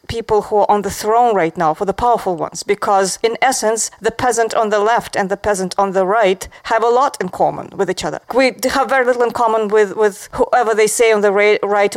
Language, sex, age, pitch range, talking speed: English, female, 40-59, 195-235 Hz, 240 wpm